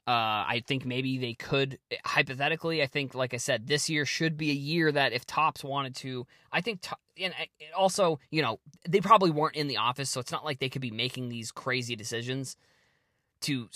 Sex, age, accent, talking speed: male, 20-39, American, 205 wpm